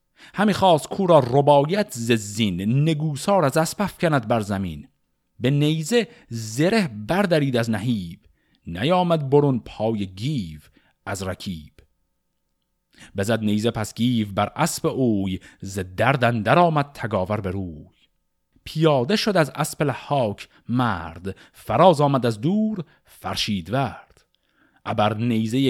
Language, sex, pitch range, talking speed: Persian, male, 105-150 Hz, 120 wpm